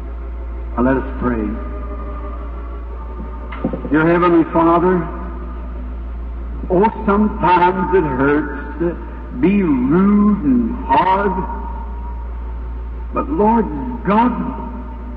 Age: 60-79